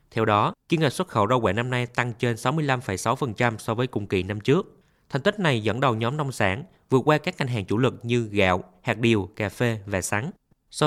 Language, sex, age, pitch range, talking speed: Vietnamese, male, 20-39, 110-140 Hz, 235 wpm